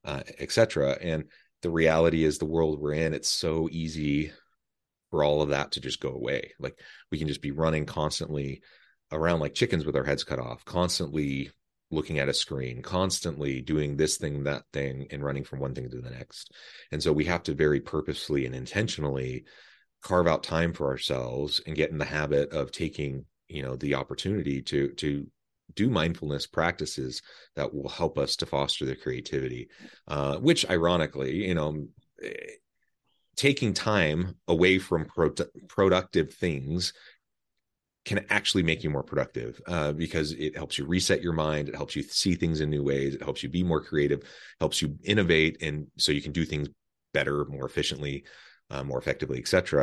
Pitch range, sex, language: 70-80 Hz, male, English